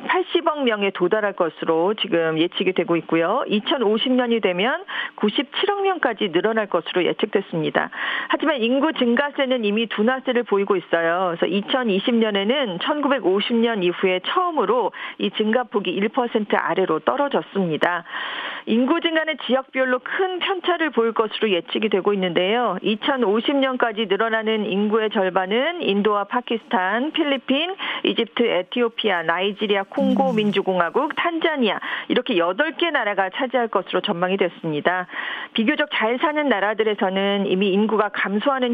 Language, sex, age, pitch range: Korean, female, 50-69, 195-270 Hz